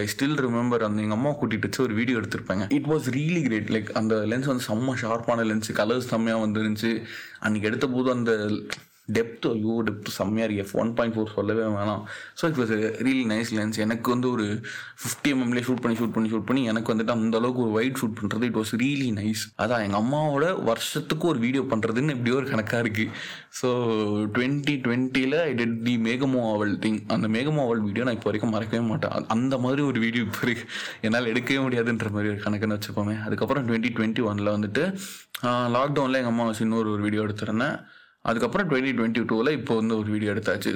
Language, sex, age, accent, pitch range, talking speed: Tamil, male, 20-39, native, 110-125 Hz, 190 wpm